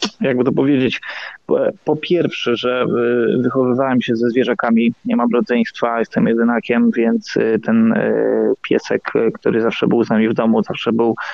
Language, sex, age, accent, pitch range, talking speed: Polish, male, 20-39, native, 120-145 Hz, 150 wpm